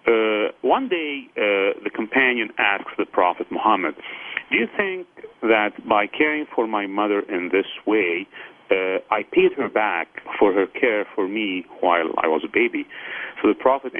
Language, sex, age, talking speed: English, male, 40-59, 170 wpm